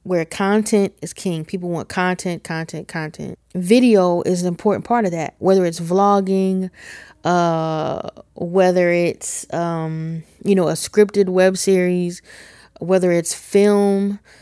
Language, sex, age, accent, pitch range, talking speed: English, female, 20-39, American, 170-200 Hz, 135 wpm